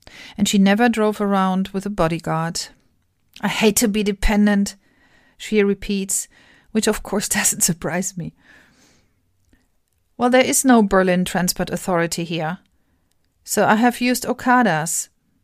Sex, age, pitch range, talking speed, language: female, 40-59, 165-225 Hz, 130 wpm, English